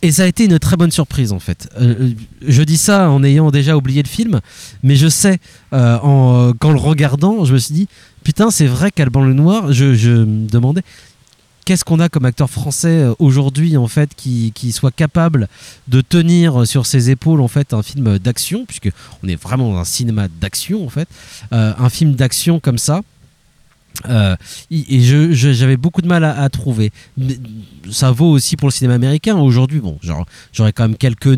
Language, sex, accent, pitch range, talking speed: French, male, French, 115-150 Hz, 205 wpm